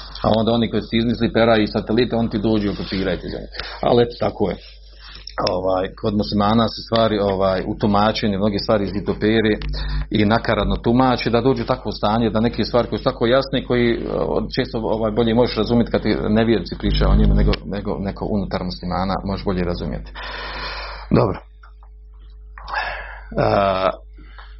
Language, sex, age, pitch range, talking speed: Croatian, male, 40-59, 95-115 Hz, 155 wpm